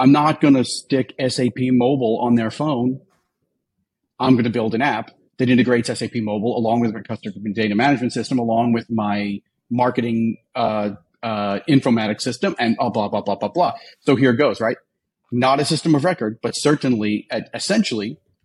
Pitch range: 105-135 Hz